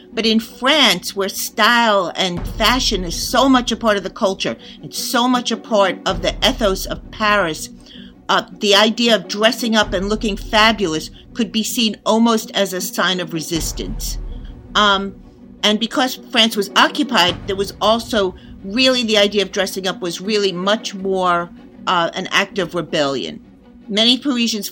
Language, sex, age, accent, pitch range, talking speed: English, female, 50-69, American, 190-225 Hz, 165 wpm